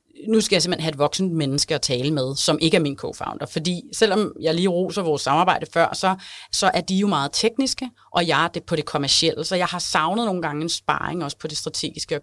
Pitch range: 150-190 Hz